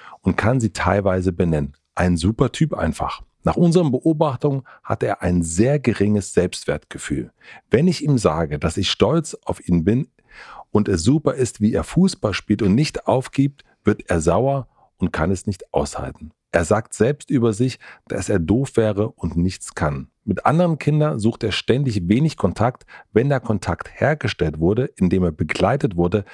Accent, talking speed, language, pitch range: German, 175 wpm, German, 90-130 Hz